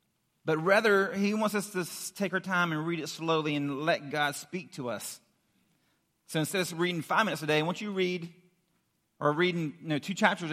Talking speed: 215 wpm